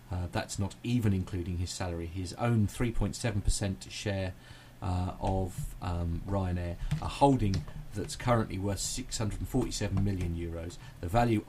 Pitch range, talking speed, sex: 95-125 Hz, 130 wpm, male